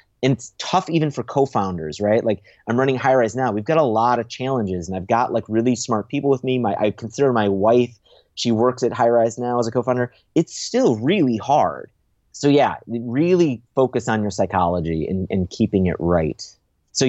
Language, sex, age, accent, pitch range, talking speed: English, male, 30-49, American, 100-130 Hz, 205 wpm